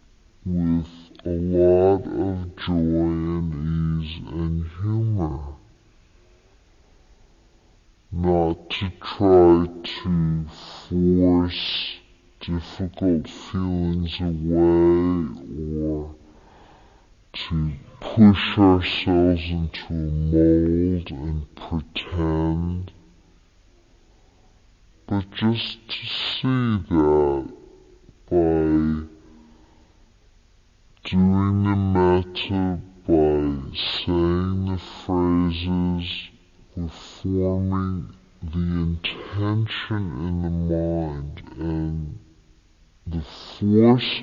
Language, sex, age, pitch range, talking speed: English, female, 50-69, 80-95 Hz, 65 wpm